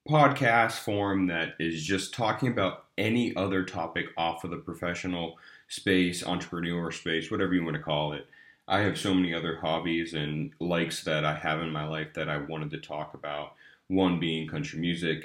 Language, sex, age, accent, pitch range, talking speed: English, male, 30-49, American, 85-110 Hz, 185 wpm